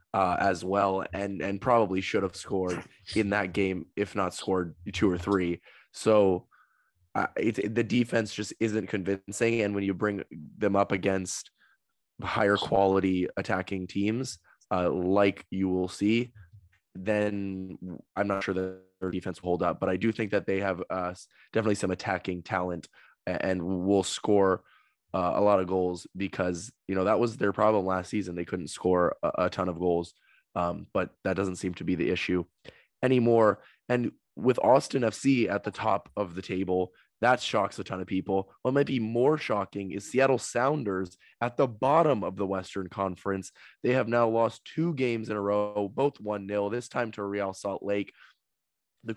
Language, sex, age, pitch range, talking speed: English, male, 20-39, 95-110 Hz, 180 wpm